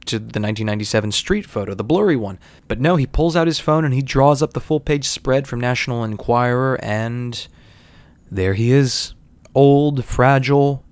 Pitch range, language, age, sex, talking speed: 110-145 Hz, English, 20-39, male, 170 wpm